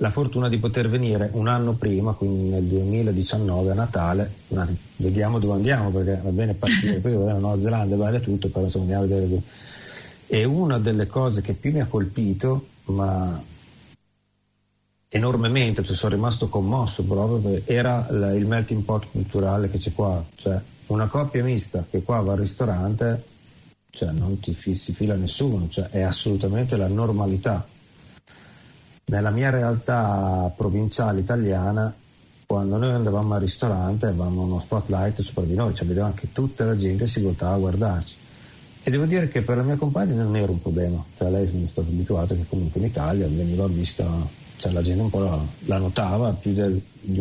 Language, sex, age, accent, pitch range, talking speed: Italian, male, 40-59, native, 95-115 Hz, 175 wpm